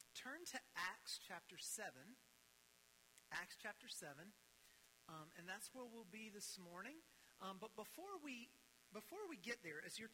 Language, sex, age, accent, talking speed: English, male, 40-59, American, 155 wpm